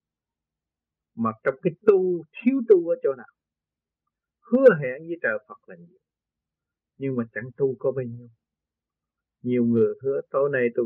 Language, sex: Vietnamese, male